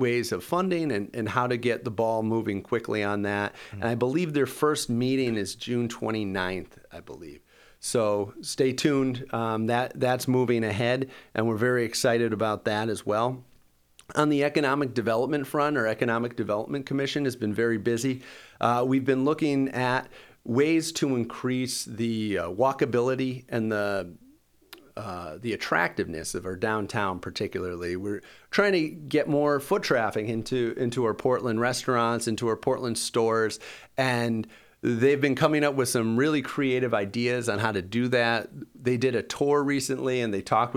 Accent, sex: American, male